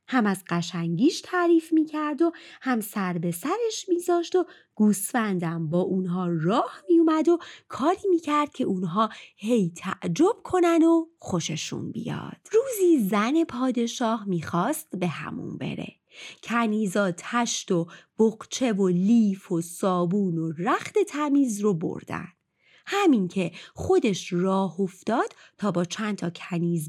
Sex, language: female, Persian